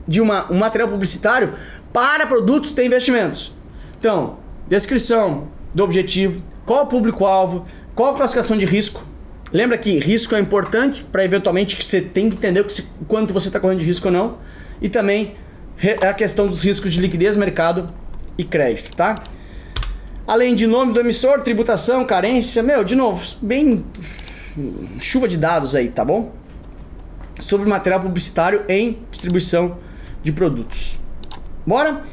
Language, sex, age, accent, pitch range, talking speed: Portuguese, male, 20-39, Brazilian, 175-250 Hz, 150 wpm